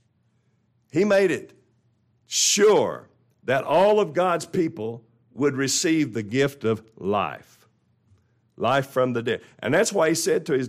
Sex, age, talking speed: male, 50-69, 145 wpm